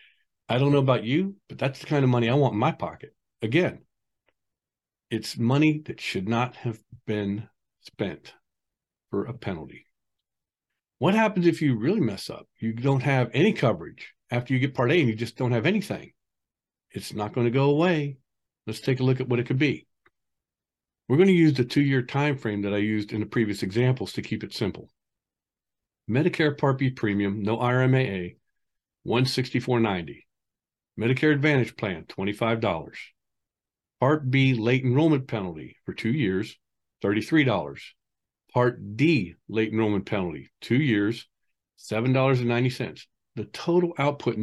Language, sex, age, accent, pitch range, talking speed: English, male, 50-69, American, 110-140 Hz, 160 wpm